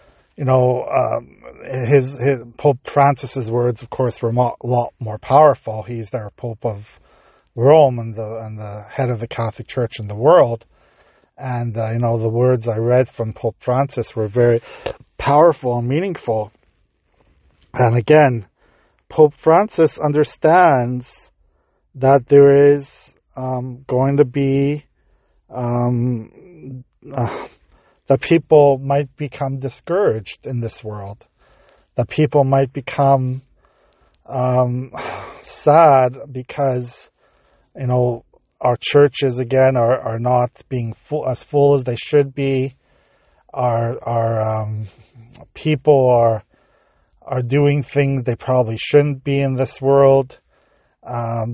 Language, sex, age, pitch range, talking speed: English, male, 40-59, 115-140 Hz, 125 wpm